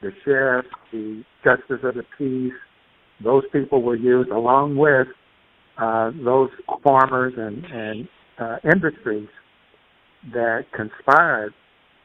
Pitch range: 110-130 Hz